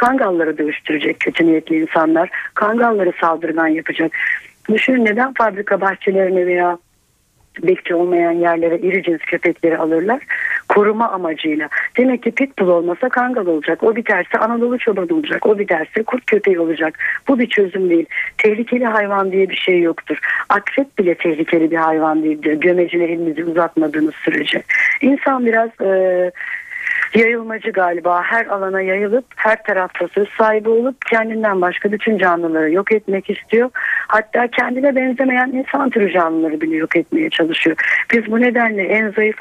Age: 60-79